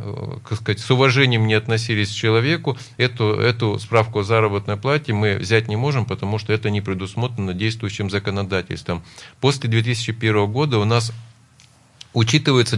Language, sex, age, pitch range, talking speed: Russian, male, 40-59, 105-125 Hz, 135 wpm